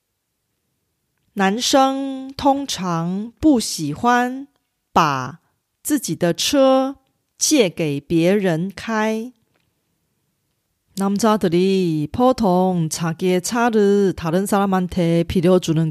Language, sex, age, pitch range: Korean, female, 30-49, 165-245 Hz